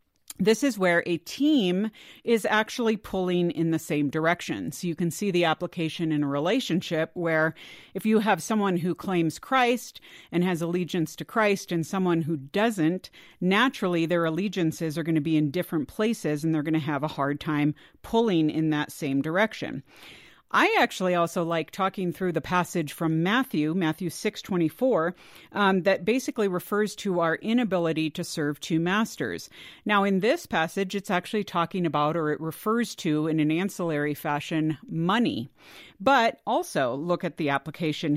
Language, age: English, 50-69